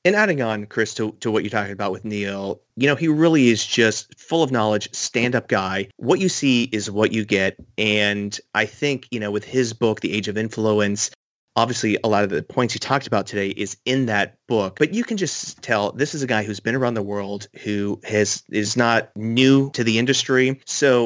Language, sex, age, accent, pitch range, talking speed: English, male, 30-49, American, 105-125 Hz, 225 wpm